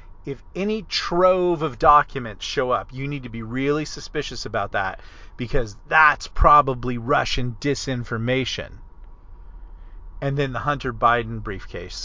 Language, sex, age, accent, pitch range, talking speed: English, male, 40-59, American, 100-140 Hz, 130 wpm